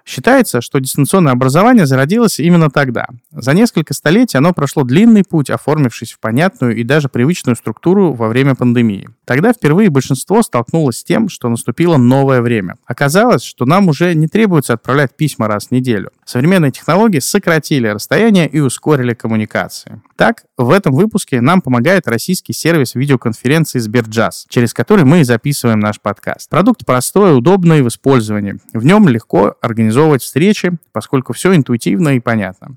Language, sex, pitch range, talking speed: Russian, male, 120-170 Hz, 155 wpm